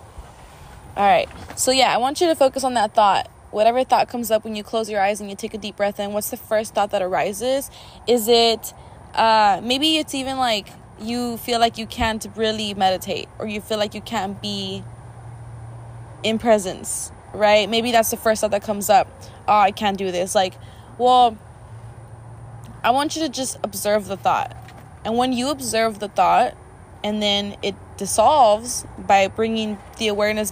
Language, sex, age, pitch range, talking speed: English, female, 20-39, 195-240 Hz, 185 wpm